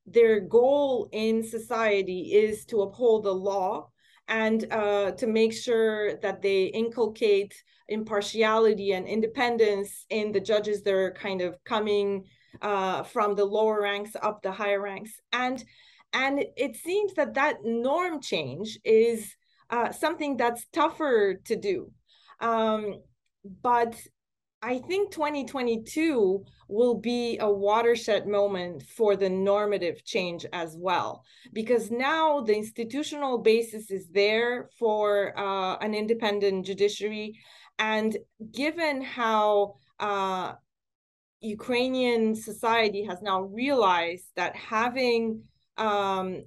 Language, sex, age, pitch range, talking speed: English, female, 30-49, 200-240 Hz, 120 wpm